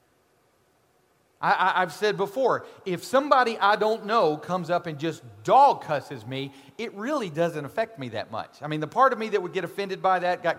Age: 40-59